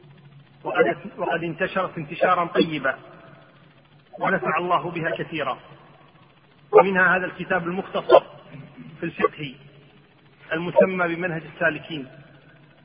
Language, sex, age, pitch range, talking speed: Arabic, male, 40-59, 160-185 Hz, 80 wpm